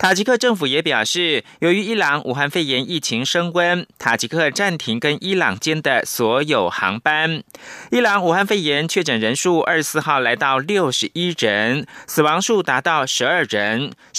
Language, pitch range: Chinese, 150-200 Hz